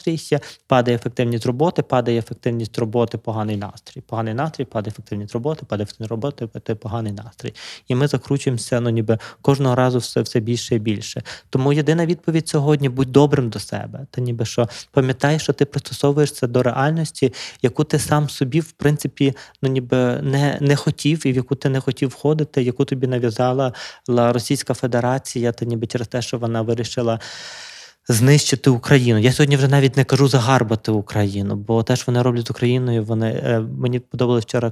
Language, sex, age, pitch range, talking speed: Ukrainian, male, 20-39, 115-135 Hz, 170 wpm